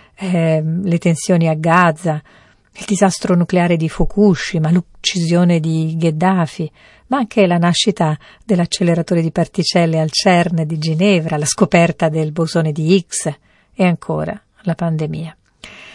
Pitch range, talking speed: 160-195 Hz, 130 wpm